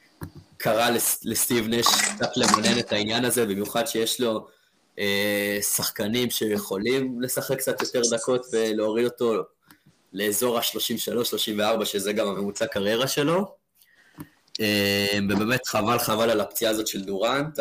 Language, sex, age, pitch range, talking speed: Hebrew, male, 20-39, 105-135 Hz, 125 wpm